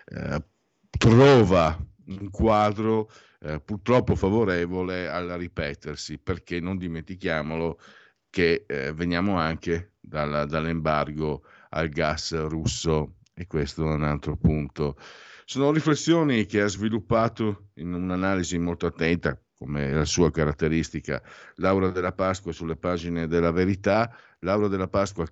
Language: Italian